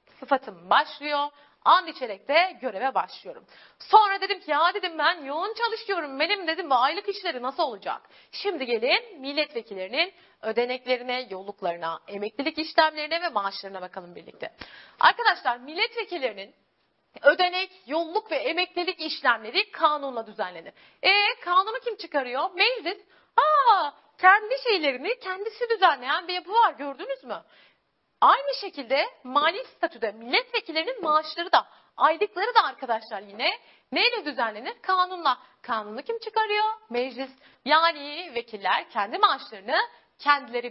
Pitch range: 250-390 Hz